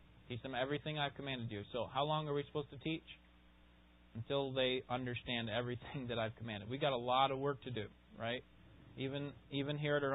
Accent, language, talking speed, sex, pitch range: American, English, 205 wpm, male, 115-145 Hz